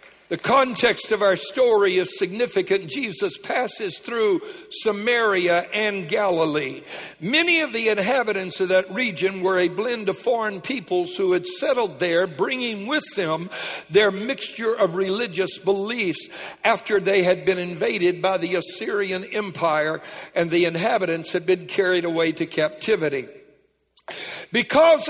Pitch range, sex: 180-240 Hz, male